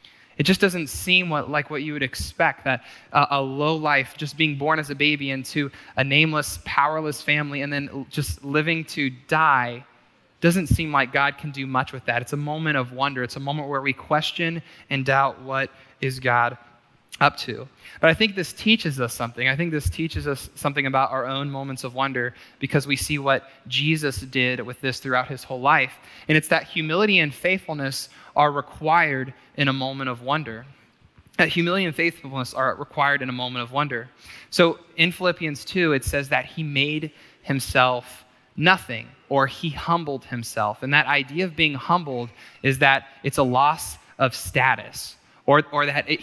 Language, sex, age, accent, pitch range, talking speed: English, male, 20-39, American, 130-160 Hz, 190 wpm